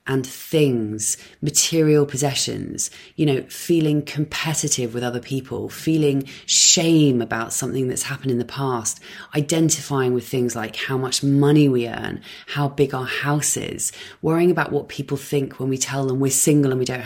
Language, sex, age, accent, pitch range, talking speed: English, female, 20-39, British, 125-150 Hz, 170 wpm